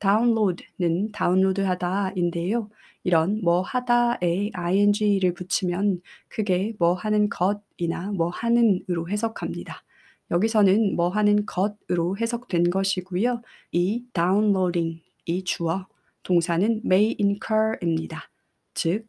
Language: Korean